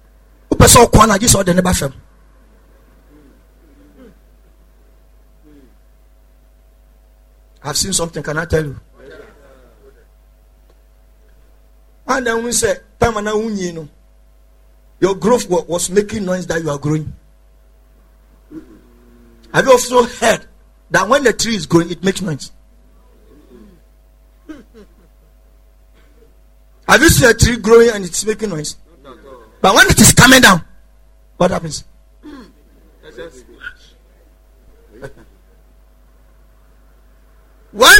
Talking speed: 80 wpm